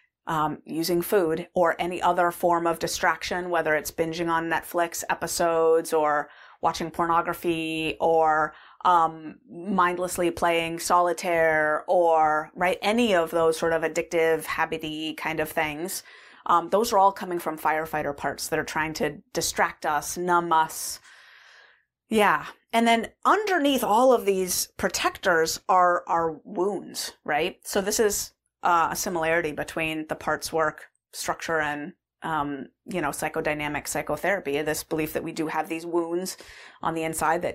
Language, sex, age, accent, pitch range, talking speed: English, female, 30-49, American, 160-185 Hz, 150 wpm